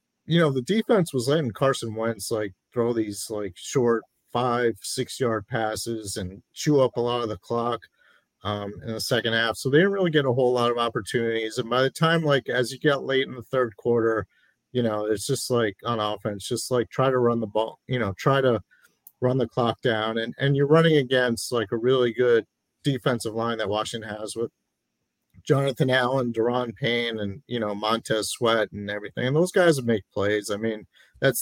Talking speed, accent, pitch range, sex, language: 210 wpm, American, 110-130 Hz, male, English